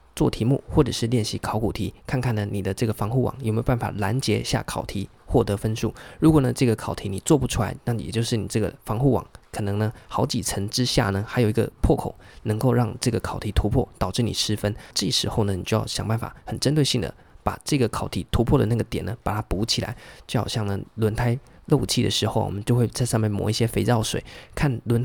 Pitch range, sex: 105-125 Hz, male